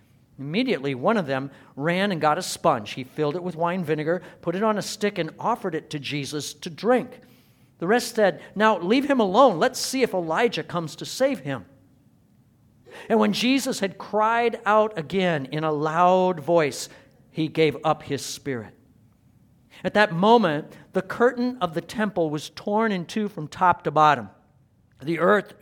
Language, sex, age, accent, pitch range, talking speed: English, male, 50-69, American, 155-220 Hz, 180 wpm